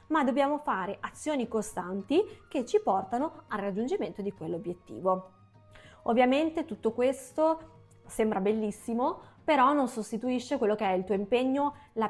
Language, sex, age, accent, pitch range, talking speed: Italian, female, 20-39, native, 205-265 Hz, 135 wpm